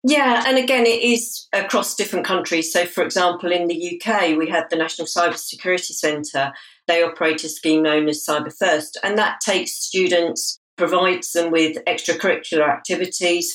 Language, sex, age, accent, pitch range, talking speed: English, female, 50-69, British, 150-175 Hz, 170 wpm